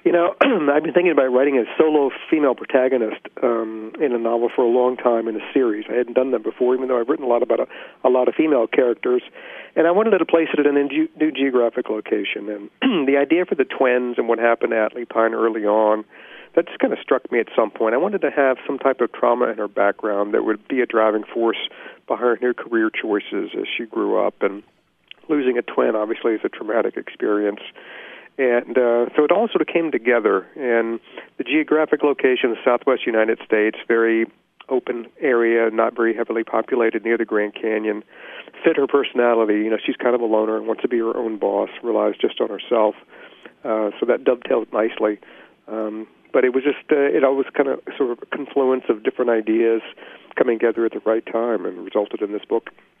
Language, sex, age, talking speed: English, male, 50-69, 215 wpm